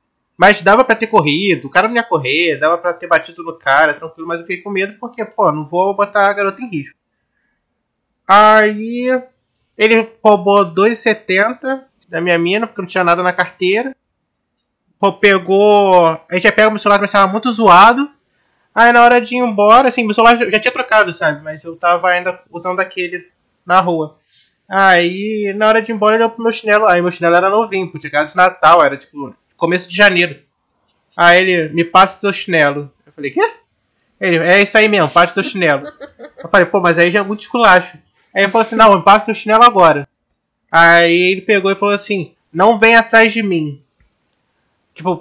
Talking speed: 205 wpm